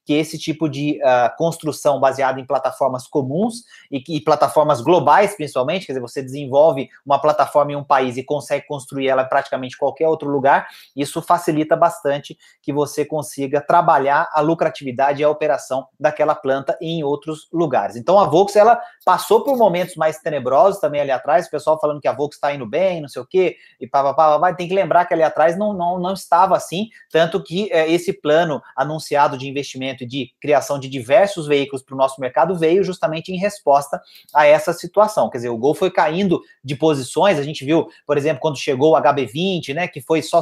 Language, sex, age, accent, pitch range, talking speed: Portuguese, male, 30-49, Brazilian, 140-170 Hz, 190 wpm